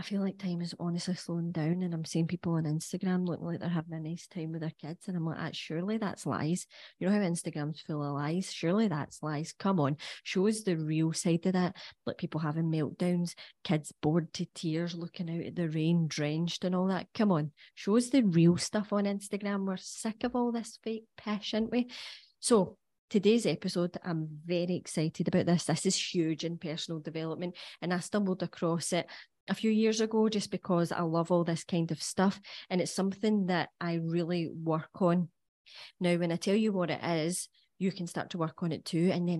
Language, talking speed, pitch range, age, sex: English, 215 wpm, 160-185 Hz, 20-39, female